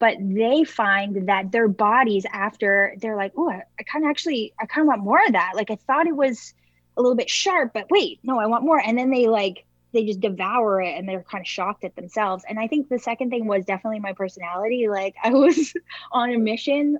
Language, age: English, 10-29